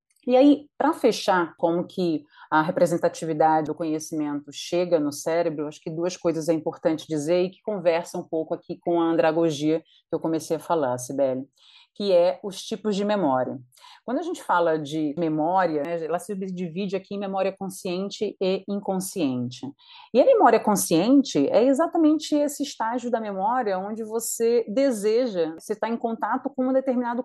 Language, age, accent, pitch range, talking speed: Portuguese, 40-59, Brazilian, 165-240 Hz, 170 wpm